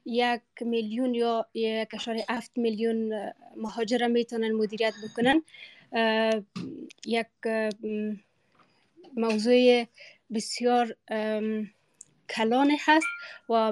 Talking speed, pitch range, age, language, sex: 75 wpm, 220-255 Hz, 20-39, Persian, female